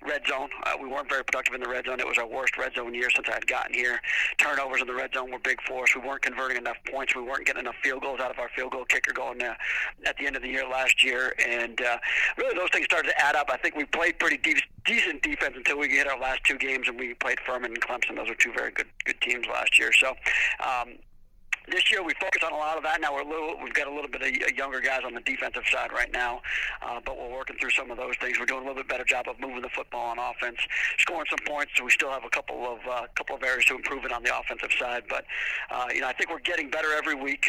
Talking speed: 290 wpm